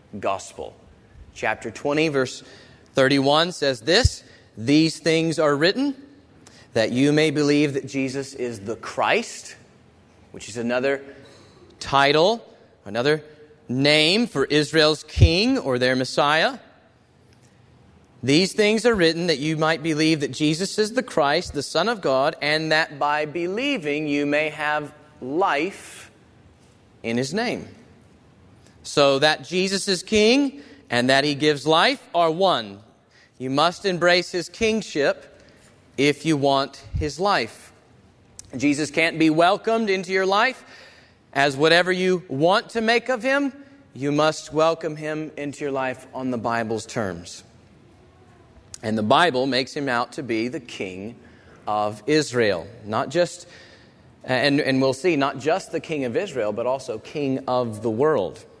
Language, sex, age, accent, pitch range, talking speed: English, male, 30-49, American, 125-165 Hz, 140 wpm